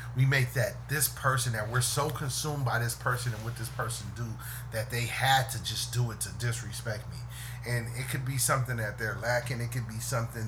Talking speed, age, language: 225 wpm, 30-49, English